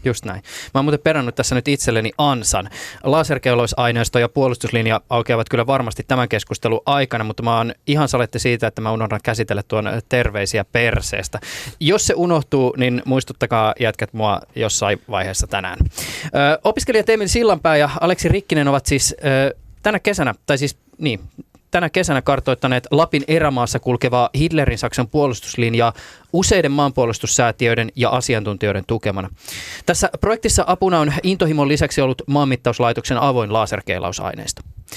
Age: 20-39